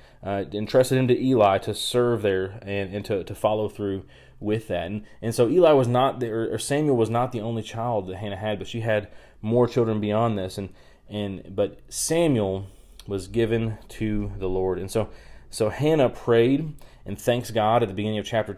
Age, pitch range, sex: 30-49, 105-125 Hz, male